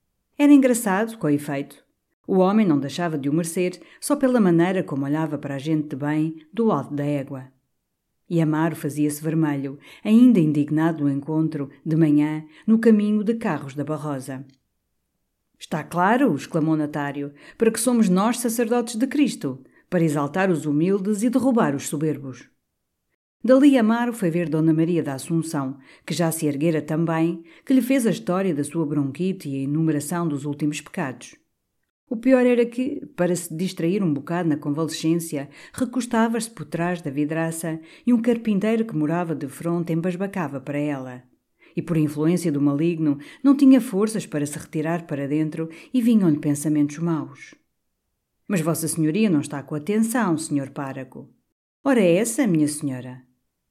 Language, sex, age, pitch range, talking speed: Portuguese, female, 50-69, 145-205 Hz, 165 wpm